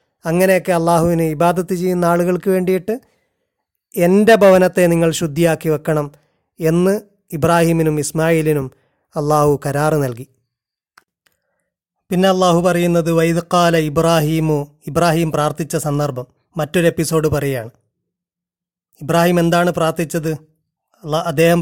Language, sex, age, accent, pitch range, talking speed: Malayalam, male, 30-49, native, 155-175 Hz, 85 wpm